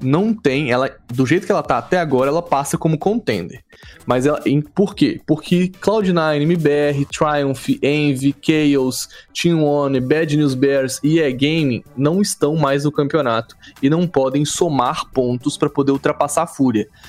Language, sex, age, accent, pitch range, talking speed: Portuguese, male, 20-39, Brazilian, 135-180 Hz, 165 wpm